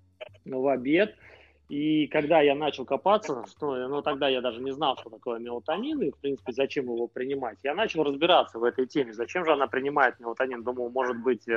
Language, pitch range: Russian, 130-160 Hz